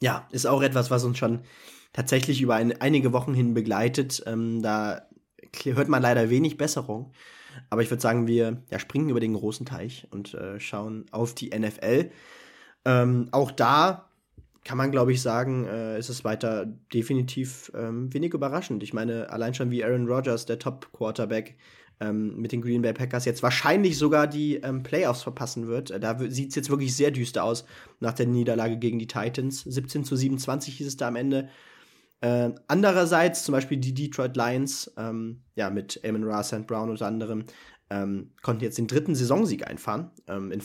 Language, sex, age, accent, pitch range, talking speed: German, male, 20-39, German, 115-135 Hz, 180 wpm